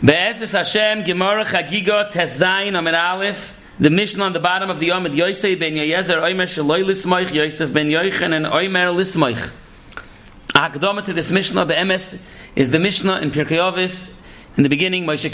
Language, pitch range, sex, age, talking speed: English, 160-190 Hz, male, 40-59, 65 wpm